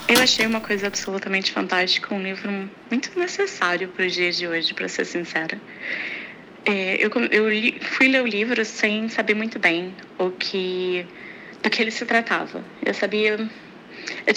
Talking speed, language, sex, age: 150 wpm, Portuguese, female, 20-39